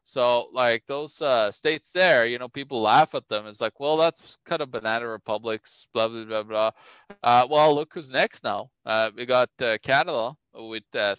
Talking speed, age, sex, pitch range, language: 195 wpm, 20-39, male, 110-135 Hz, English